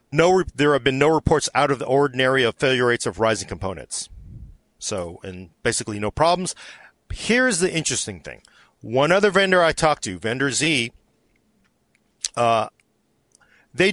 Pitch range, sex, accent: 120-170 Hz, male, American